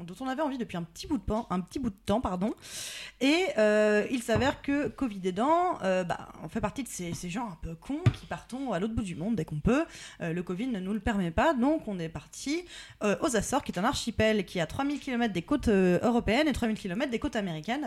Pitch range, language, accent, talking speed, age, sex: 195-265 Hz, French, French, 260 wpm, 20-39, female